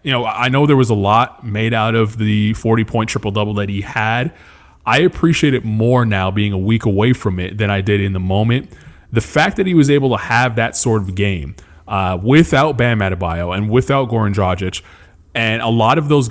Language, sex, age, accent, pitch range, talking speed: English, male, 20-39, American, 100-125 Hz, 220 wpm